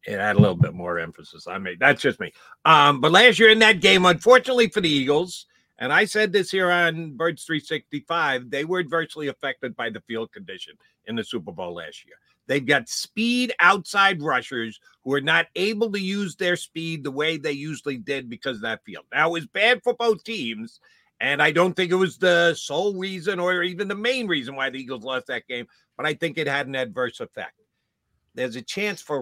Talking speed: 220 wpm